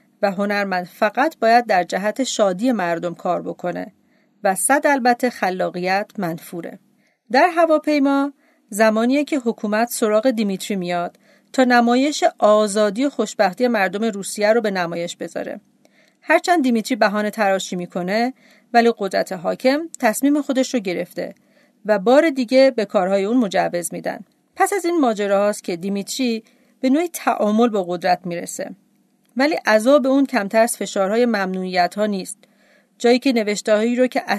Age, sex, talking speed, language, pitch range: 40-59, female, 145 wpm, Persian, 195-250 Hz